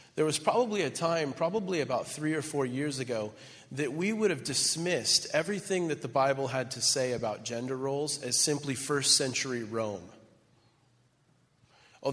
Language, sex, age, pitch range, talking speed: English, male, 30-49, 120-150 Hz, 165 wpm